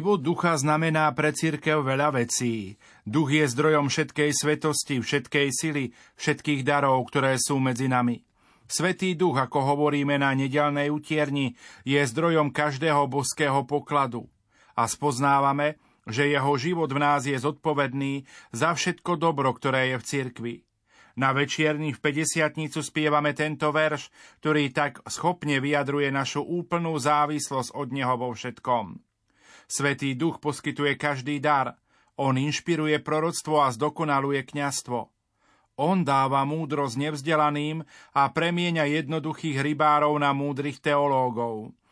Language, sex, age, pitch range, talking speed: Slovak, male, 40-59, 140-155 Hz, 125 wpm